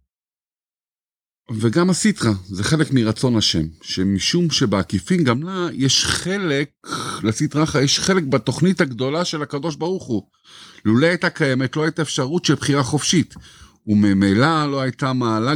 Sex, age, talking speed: male, 50-69, 130 wpm